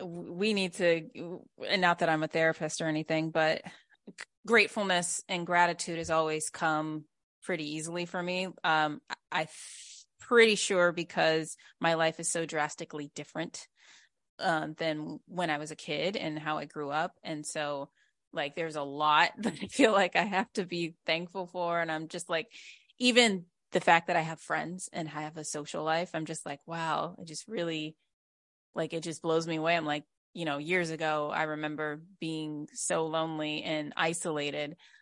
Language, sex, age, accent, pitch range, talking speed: English, female, 20-39, American, 155-175 Hz, 180 wpm